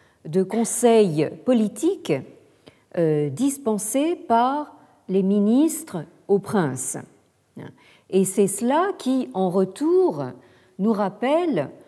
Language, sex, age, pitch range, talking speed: French, female, 50-69, 160-230 Hz, 85 wpm